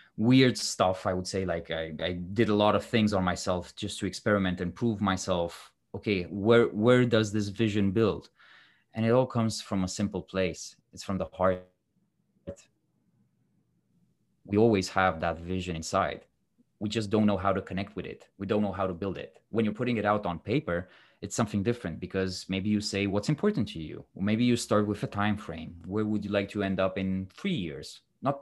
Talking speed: 210 wpm